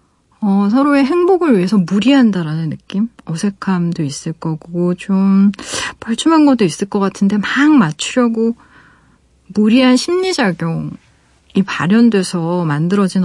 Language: Korean